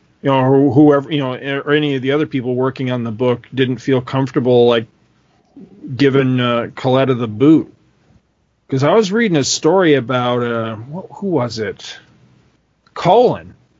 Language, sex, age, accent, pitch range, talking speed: English, male, 40-59, American, 125-150 Hz, 160 wpm